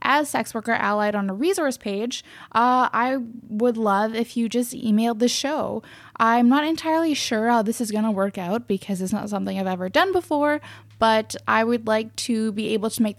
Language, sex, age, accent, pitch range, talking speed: English, female, 10-29, American, 205-245 Hz, 210 wpm